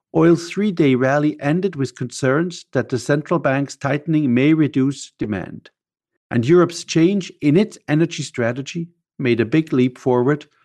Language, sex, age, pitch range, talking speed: English, male, 50-69, 130-170 Hz, 145 wpm